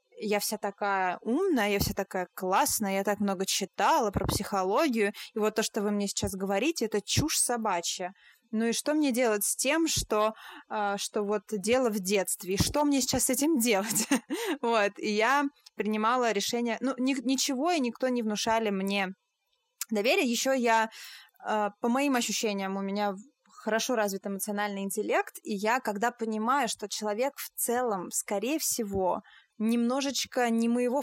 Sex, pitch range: female, 210-255 Hz